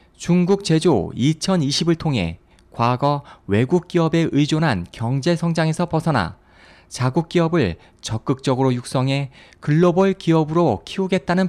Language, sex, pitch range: Korean, male, 115-165 Hz